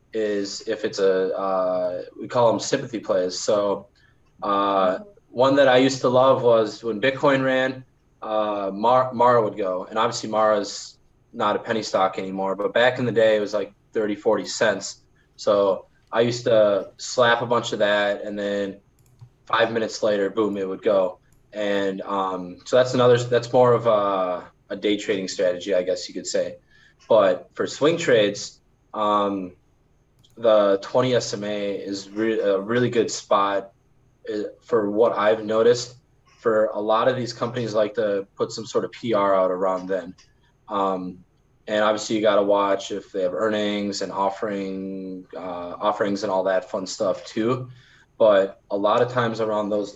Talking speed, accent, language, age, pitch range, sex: 170 wpm, American, English, 20-39, 100-120 Hz, male